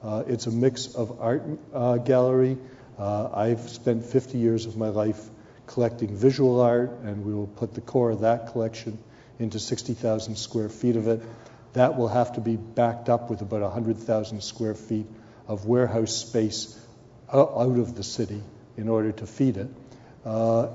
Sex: male